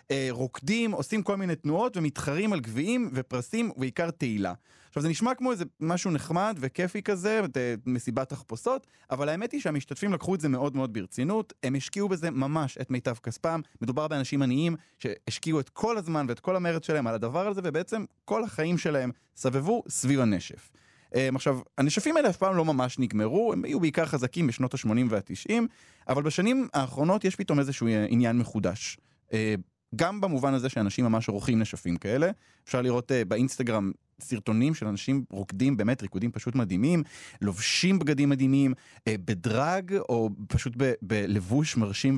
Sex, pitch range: male, 120-170 Hz